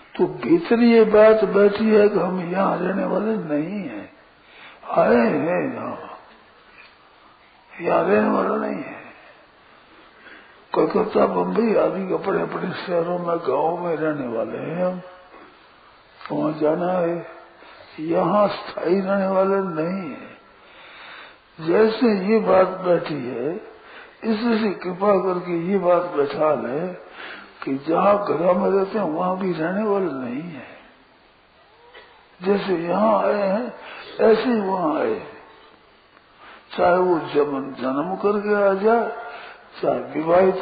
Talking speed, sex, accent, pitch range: 135 wpm, male, native, 170-205 Hz